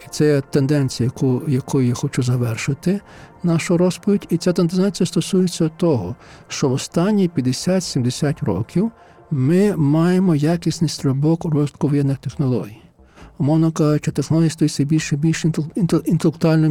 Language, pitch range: Ukrainian, 140-170 Hz